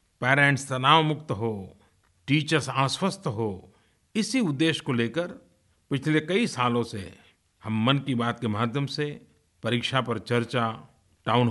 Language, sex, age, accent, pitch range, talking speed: Hindi, male, 50-69, native, 110-150 Hz, 135 wpm